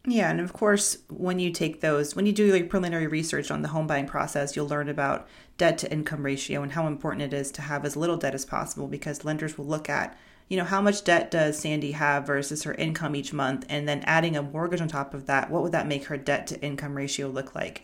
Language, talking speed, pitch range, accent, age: English, 255 wpm, 145-170 Hz, American, 30-49